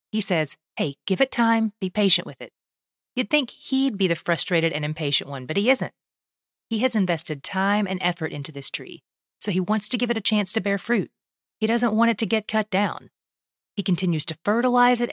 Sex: female